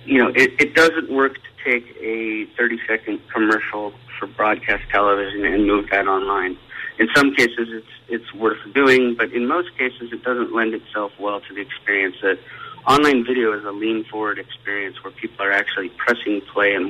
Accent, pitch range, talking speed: American, 105-130 Hz, 180 wpm